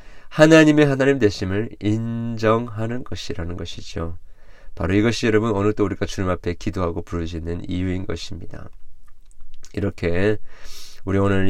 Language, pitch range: Korean, 90-125 Hz